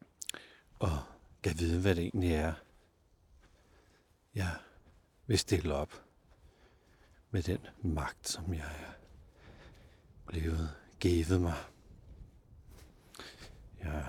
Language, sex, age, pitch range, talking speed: Danish, male, 60-79, 80-100 Hz, 90 wpm